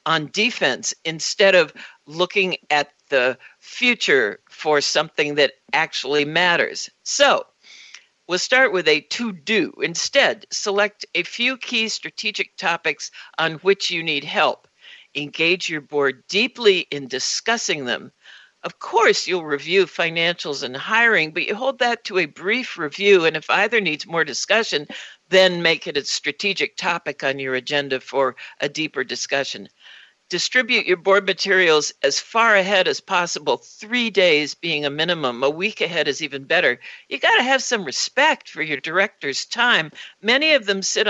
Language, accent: English, American